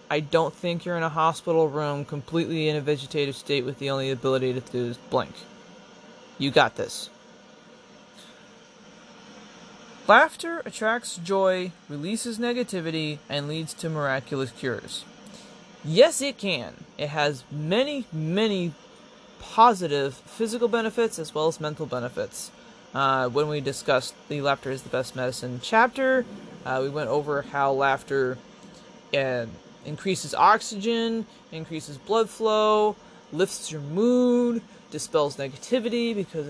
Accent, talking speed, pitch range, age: American, 130 wpm, 145-230 Hz, 20-39